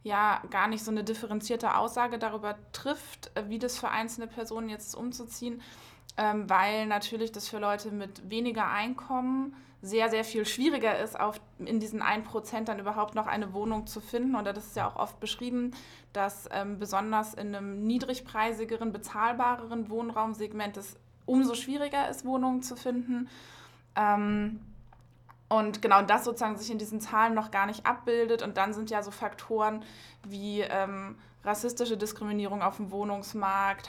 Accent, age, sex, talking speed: German, 20-39, female, 160 wpm